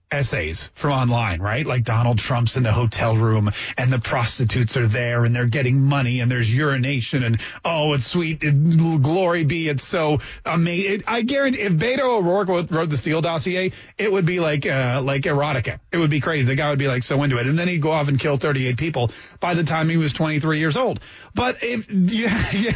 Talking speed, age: 220 wpm, 30-49